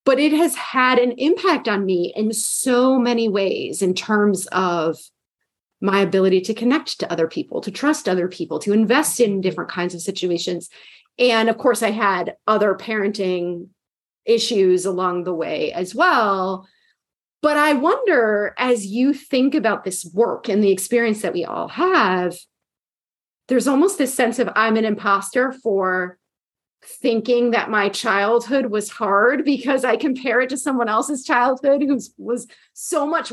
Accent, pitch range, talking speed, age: American, 195-255 Hz, 160 wpm, 30-49